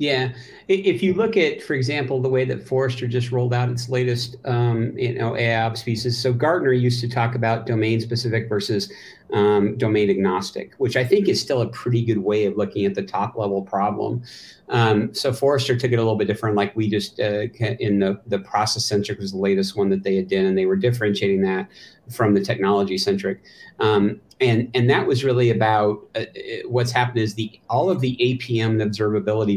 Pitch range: 100-125 Hz